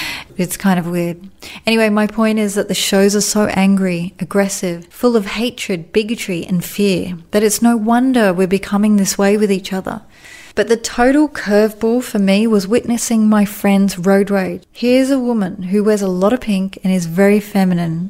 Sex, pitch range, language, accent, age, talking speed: female, 190-215 Hz, English, Australian, 30-49, 190 wpm